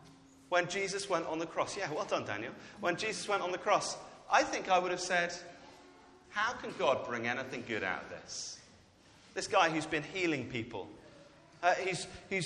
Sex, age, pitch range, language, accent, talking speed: male, 30-49, 130-185 Hz, English, British, 185 wpm